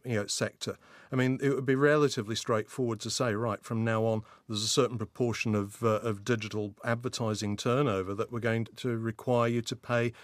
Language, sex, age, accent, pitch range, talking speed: English, male, 40-59, British, 110-135 Hz, 200 wpm